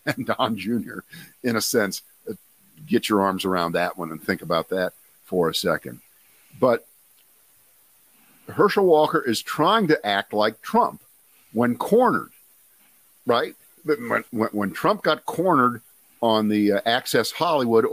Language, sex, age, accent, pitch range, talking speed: English, male, 50-69, American, 105-155 Hz, 135 wpm